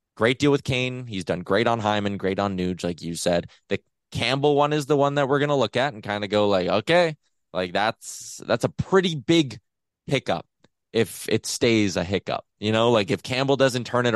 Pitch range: 105-150 Hz